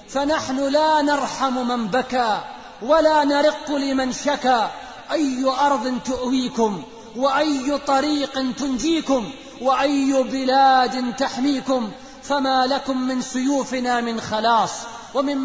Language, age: Arabic, 30-49